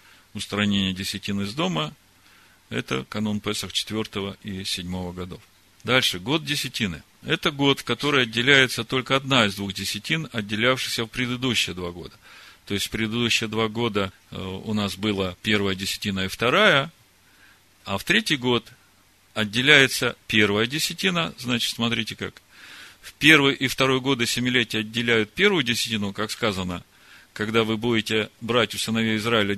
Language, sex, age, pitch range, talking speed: Russian, male, 40-59, 100-130 Hz, 145 wpm